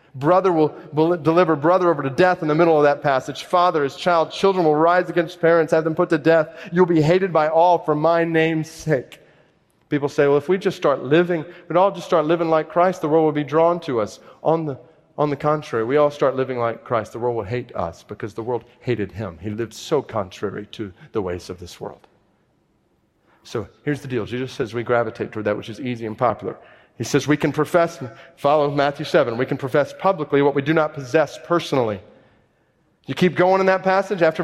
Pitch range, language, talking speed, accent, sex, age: 150-185 Hz, English, 225 wpm, American, male, 40-59